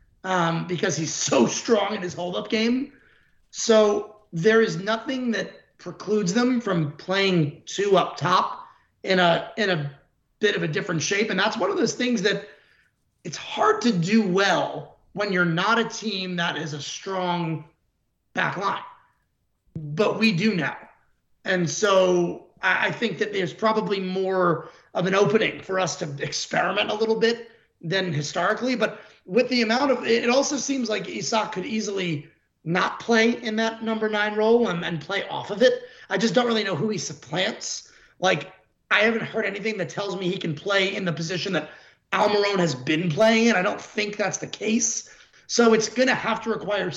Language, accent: English, American